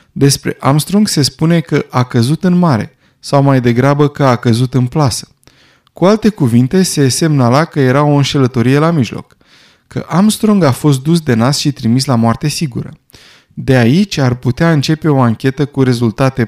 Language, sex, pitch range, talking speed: Romanian, male, 125-165 Hz, 180 wpm